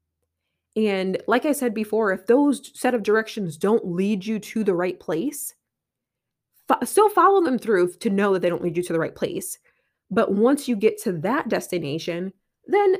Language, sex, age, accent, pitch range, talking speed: English, female, 20-39, American, 185-245 Hz, 185 wpm